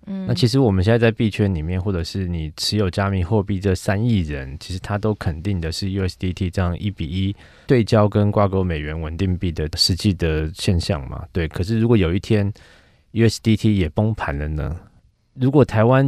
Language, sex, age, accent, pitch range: Chinese, male, 20-39, native, 85-110 Hz